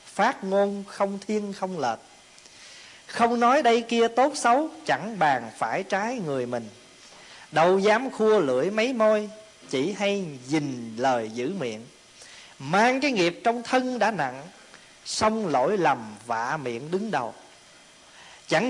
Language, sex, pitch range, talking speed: Vietnamese, male, 125-205 Hz, 145 wpm